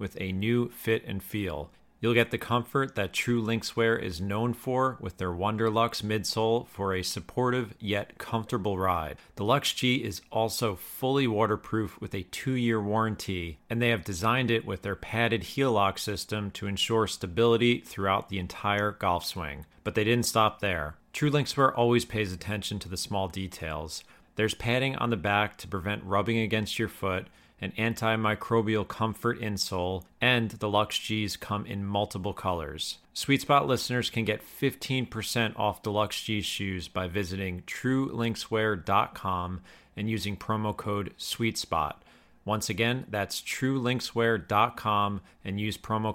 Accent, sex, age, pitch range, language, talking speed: American, male, 40-59, 95-115 Hz, English, 155 wpm